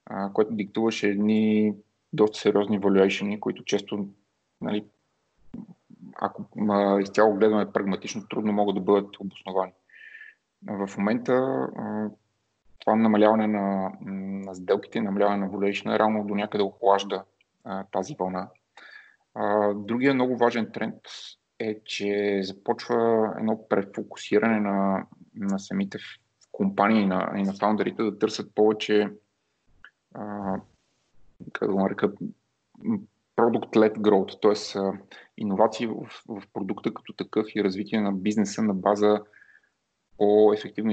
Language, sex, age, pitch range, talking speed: Bulgarian, male, 20-39, 100-110 Hz, 105 wpm